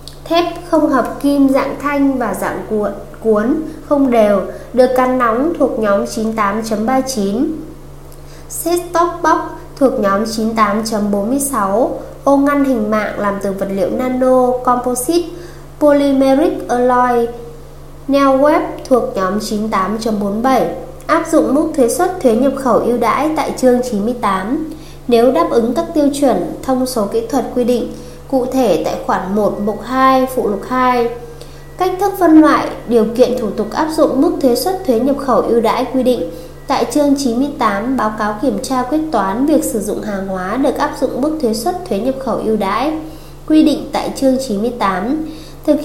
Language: Vietnamese